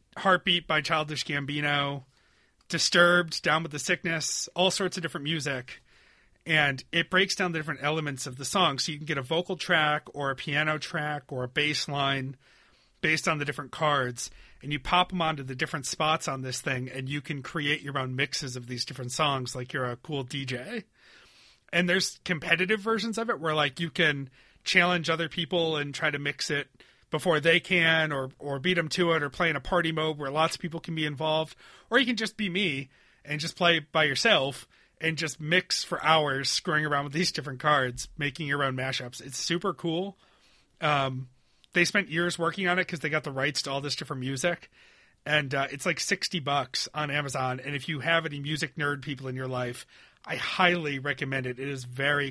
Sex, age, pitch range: male, 30-49, 135-170 Hz